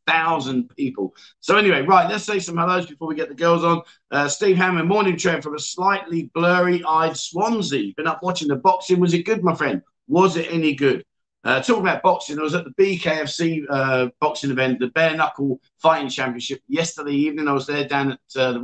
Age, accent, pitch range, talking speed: 50-69, British, 135-180 Hz, 215 wpm